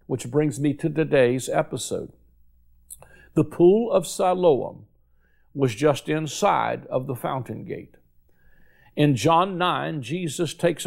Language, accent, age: English, American, 60-79